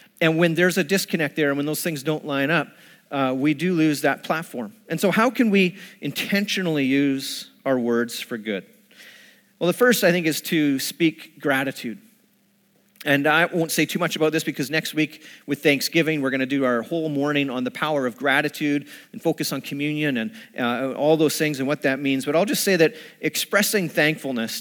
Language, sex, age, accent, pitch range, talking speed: English, male, 40-59, American, 140-185 Hz, 205 wpm